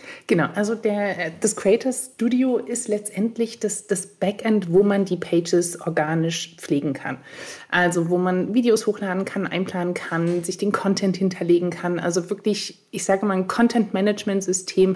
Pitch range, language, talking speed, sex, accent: 180-215 Hz, German, 150 wpm, female, German